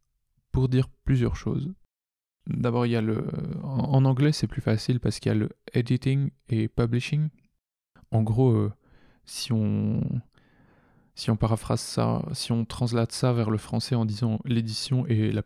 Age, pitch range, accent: 20-39, 110-125 Hz, French